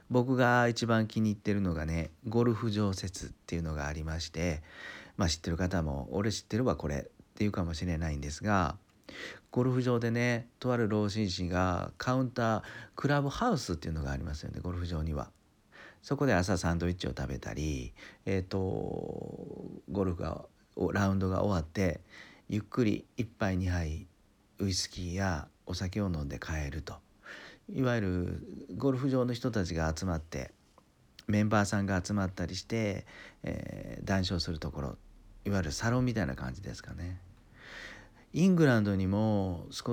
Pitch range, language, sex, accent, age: 85-110 Hz, Japanese, male, native, 40-59